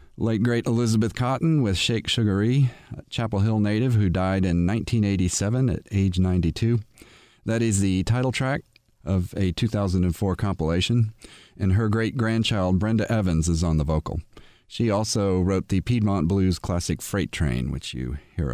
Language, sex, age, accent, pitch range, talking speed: English, male, 40-59, American, 95-115 Hz, 155 wpm